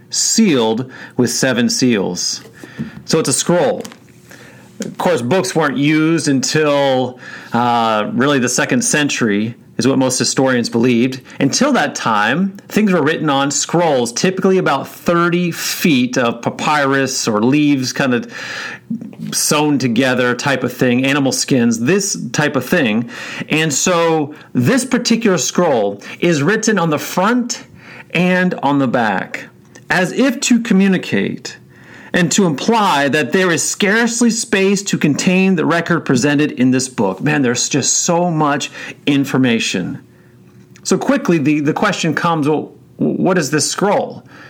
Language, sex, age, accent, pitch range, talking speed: English, male, 40-59, American, 135-185 Hz, 140 wpm